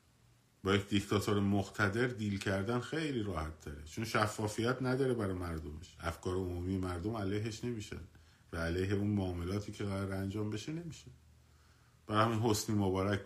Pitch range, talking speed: 80-110 Hz, 145 wpm